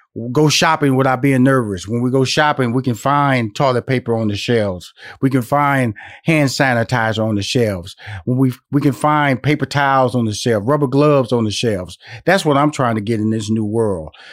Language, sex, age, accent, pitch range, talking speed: English, male, 40-59, American, 125-165 Hz, 200 wpm